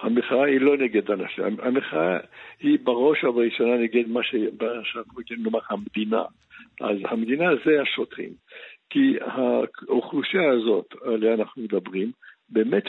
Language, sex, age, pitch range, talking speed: Hebrew, male, 60-79, 105-145 Hz, 110 wpm